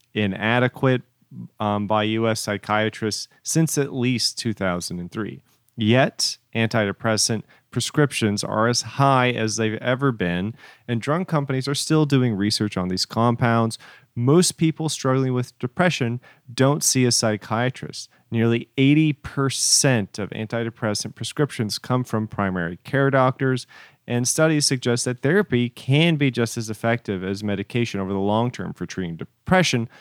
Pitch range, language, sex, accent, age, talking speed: 105-135 Hz, English, male, American, 40-59, 135 wpm